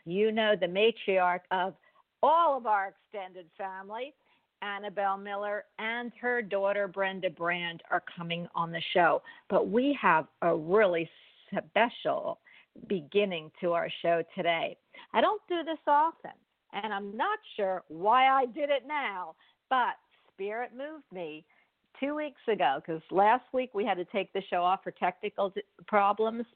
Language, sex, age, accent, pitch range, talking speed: English, female, 50-69, American, 180-240 Hz, 150 wpm